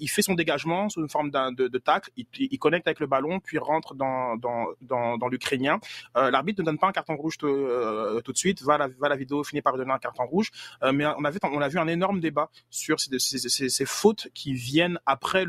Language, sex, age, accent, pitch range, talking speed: French, male, 20-39, French, 135-170 Hz, 270 wpm